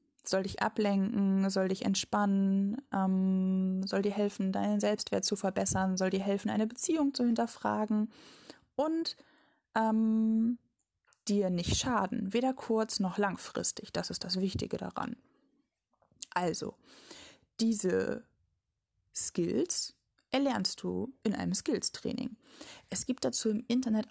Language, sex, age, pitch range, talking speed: German, female, 20-39, 190-240 Hz, 120 wpm